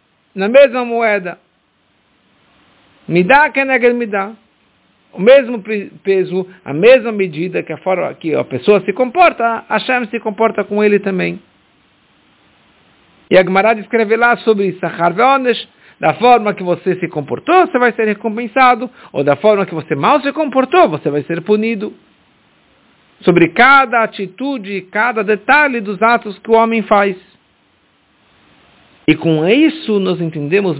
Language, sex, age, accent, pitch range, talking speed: English, male, 60-79, Brazilian, 180-235 Hz, 145 wpm